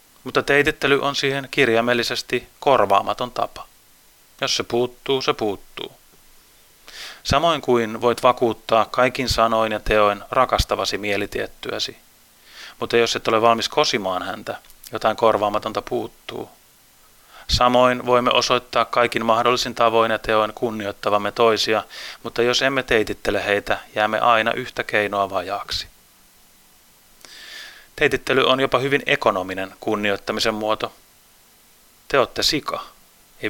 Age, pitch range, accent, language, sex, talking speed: 30-49, 110-125 Hz, native, Finnish, male, 115 wpm